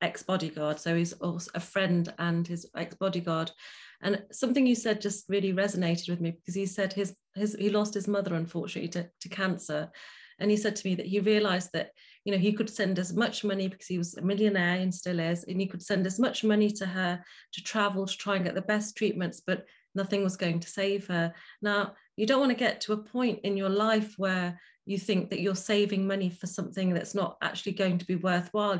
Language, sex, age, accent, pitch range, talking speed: English, female, 30-49, British, 185-210 Hz, 225 wpm